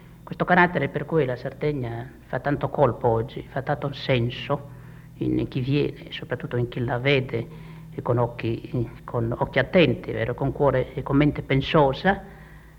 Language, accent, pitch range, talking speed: Italian, native, 125-160 Hz, 160 wpm